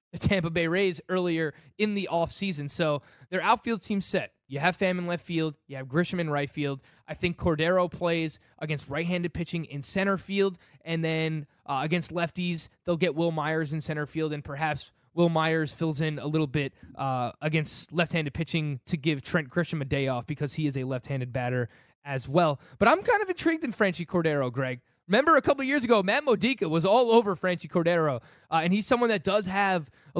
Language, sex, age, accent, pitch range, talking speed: English, male, 20-39, American, 155-195 Hz, 205 wpm